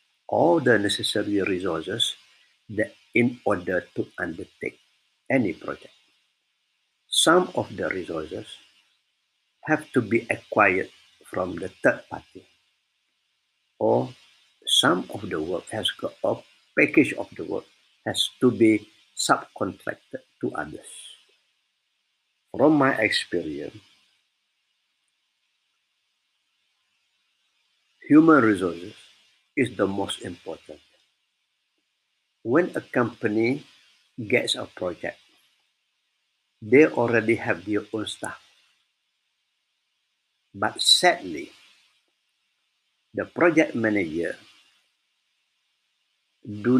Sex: male